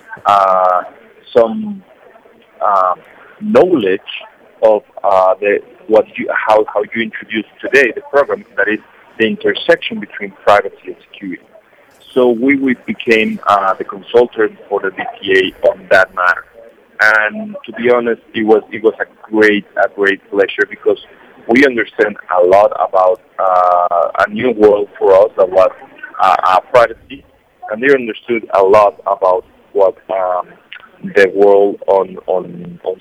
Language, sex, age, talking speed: English, male, 40-59, 145 wpm